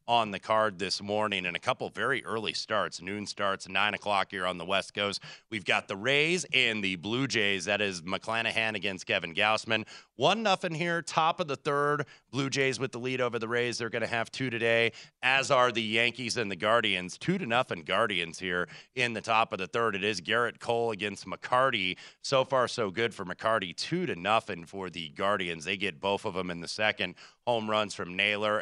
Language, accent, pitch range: English, American, 100-120 Hz